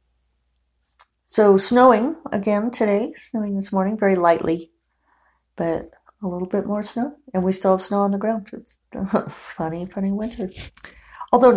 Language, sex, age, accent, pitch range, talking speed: English, female, 50-69, American, 145-200 Hz, 150 wpm